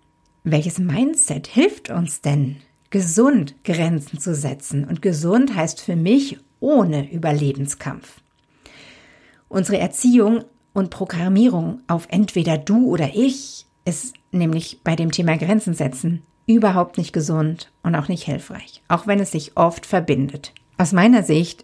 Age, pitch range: 50-69, 160-220 Hz